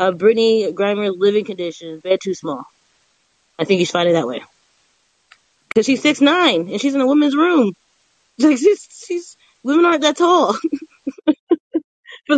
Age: 20-39